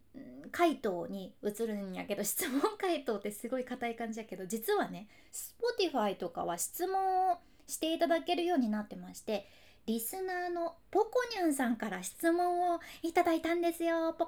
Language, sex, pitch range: Japanese, female, 215-310 Hz